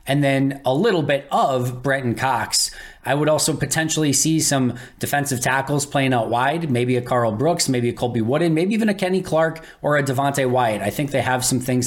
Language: English